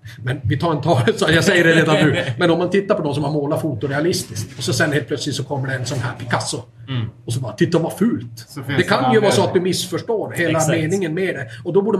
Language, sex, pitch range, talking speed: Swedish, male, 125-185 Hz, 265 wpm